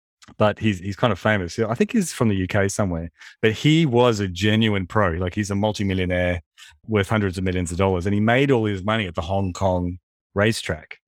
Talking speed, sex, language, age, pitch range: 215 wpm, male, English, 30-49, 90-115 Hz